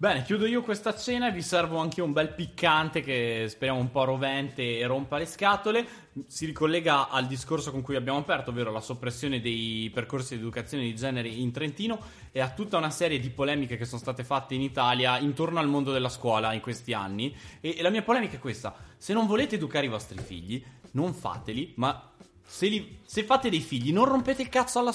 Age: 20-39